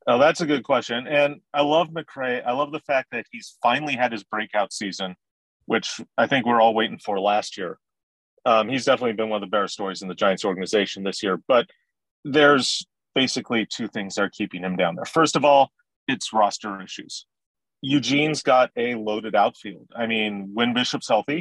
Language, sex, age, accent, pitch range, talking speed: English, male, 30-49, American, 110-150 Hz, 200 wpm